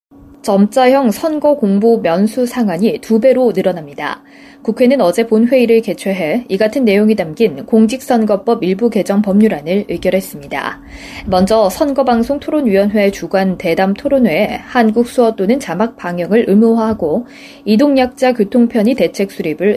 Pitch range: 195-255 Hz